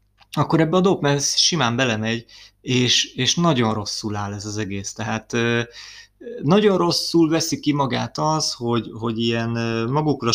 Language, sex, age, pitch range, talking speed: Hungarian, male, 20-39, 115-135 Hz, 150 wpm